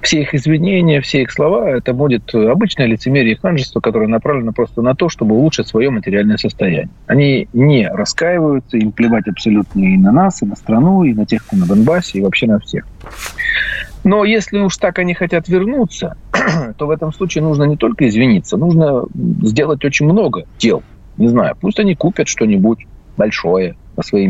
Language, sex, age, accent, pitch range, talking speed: Russian, male, 40-59, native, 120-190 Hz, 180 wpm